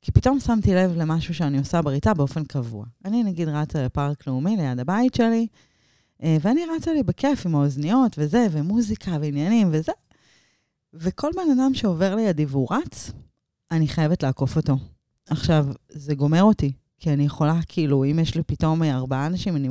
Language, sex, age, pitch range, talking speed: Hebrew, female, 30-49, 140-190 Hz, 165 wpm